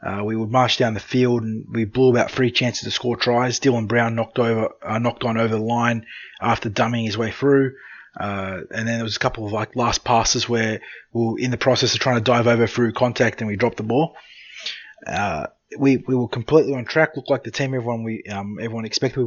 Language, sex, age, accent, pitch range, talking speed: English, male, 20-39, Australian, 110-130 Hz, 240 wpm